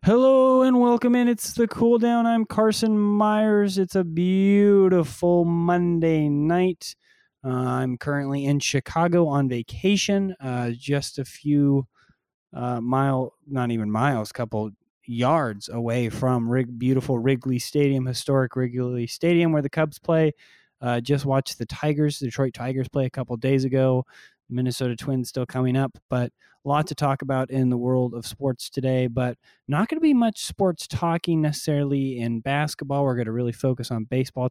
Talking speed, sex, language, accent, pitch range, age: 165 wpm, male, English, American, 120-150 Hz, 20-39